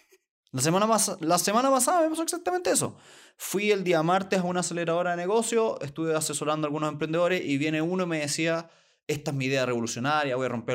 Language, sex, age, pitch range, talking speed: Spanish, male, 20-39, 135-180 Hz, 210 wpm